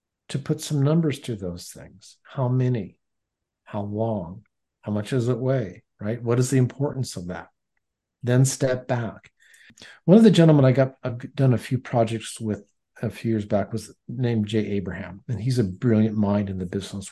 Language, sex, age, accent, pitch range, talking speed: English, male, 50-69, American, 105-135 Hz, 190 wpm